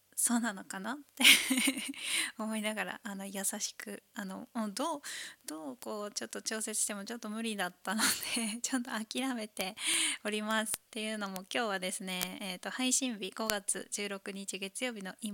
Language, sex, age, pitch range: Japanese, female, 20-39, 200-240 Hz